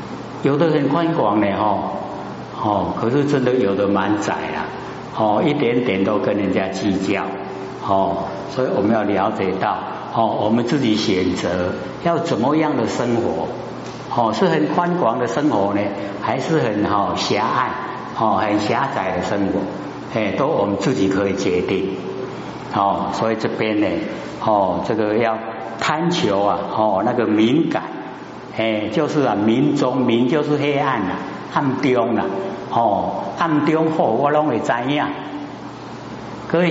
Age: 60-79